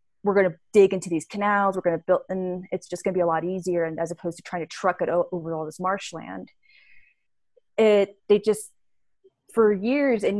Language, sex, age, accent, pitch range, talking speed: English, female, 20-39, American, 175-260 Hz, 220 wpm